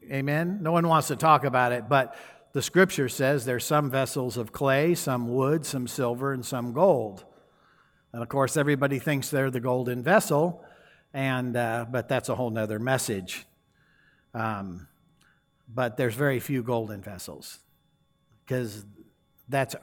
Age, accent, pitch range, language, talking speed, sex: 60-79, American, 120-140 Hz, English, 150 wpm, male